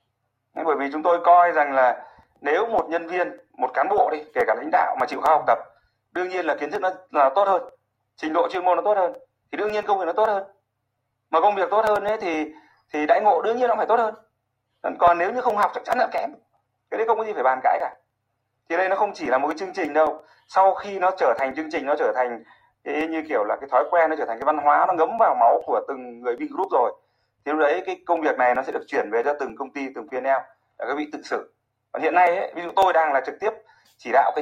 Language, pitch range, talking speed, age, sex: Vietnamese, 120-180 Hz, 285 wpm, 30-49, male